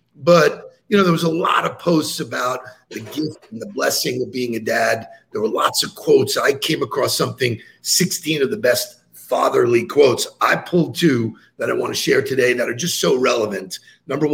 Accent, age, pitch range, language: American, 50-69, 125-205 Hz, English